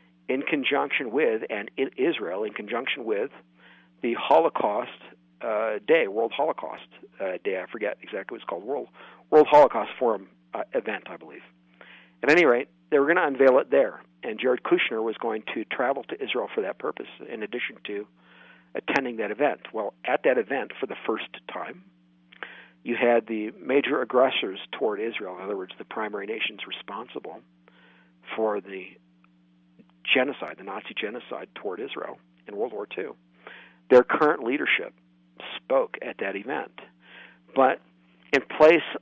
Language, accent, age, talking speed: English, American, 50-69, 160 wpm